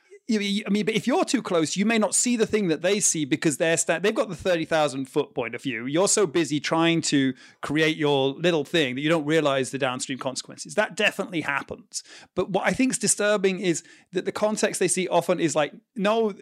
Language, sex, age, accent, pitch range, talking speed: English, male, 30-49, British, 140-185 Hz, 235 wpm